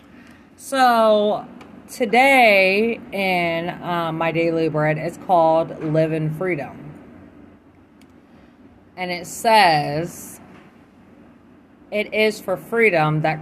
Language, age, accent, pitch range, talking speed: English, 30-49, American, 165-235 Hz, 85 wpm